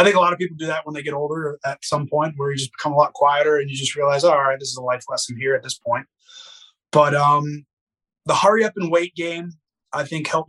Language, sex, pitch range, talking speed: English, male, 115-145 Hz, 280 wpm